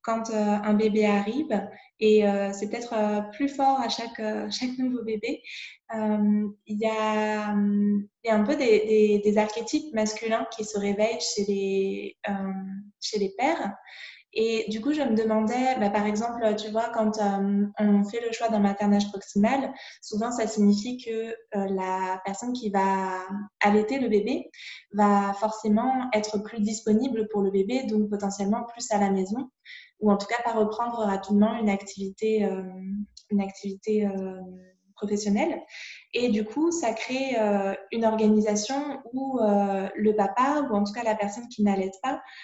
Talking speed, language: 175 wpm, French